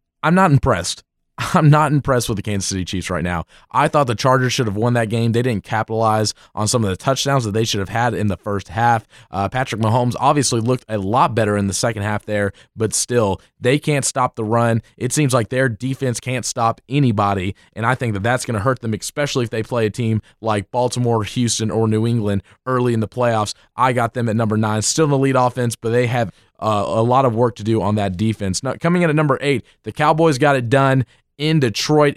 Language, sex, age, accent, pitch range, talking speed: English, male, 20-39, American, 105-130 Hz, 240 wpm